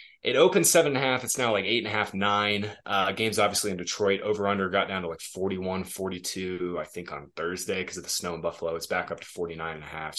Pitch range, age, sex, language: 90-110 Hz, 20-39, male, English